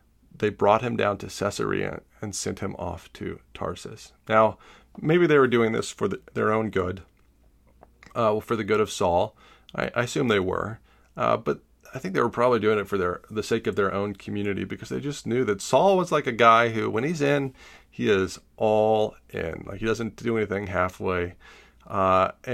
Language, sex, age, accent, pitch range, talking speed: English, male, 30-49, American, 95-115 Hz, 195 wpm